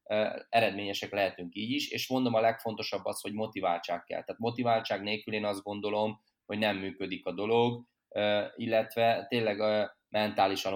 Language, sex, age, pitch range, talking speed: Hungarian, male, 20-39, 95-110 Hz, 145 wpm